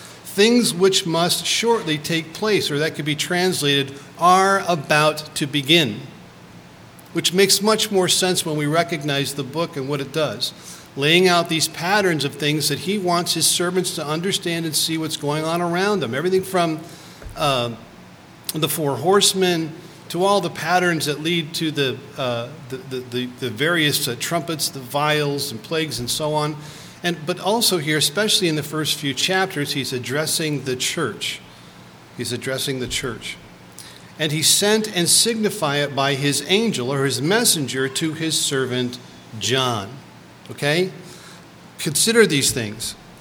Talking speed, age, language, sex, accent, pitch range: 155 wpm, 50-69, English, male, American, 145-180 Hz